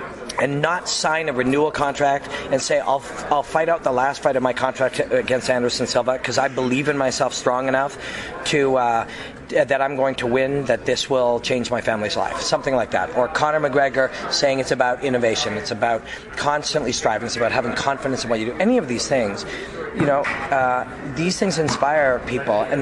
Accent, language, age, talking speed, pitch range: American, English, 30-49, 200 wpm, 125-150 Hz